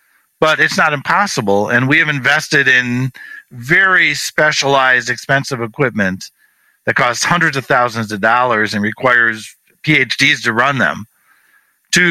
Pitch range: 125-155 Hz